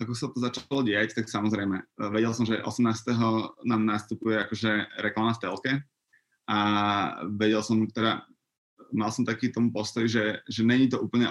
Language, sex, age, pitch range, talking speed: Slovak, male, 20-39, 110-125 Hz, 165 wpm